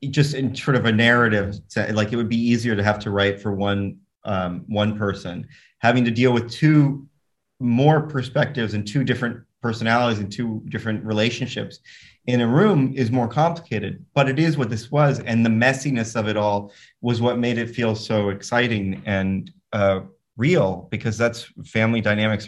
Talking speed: 180 wpm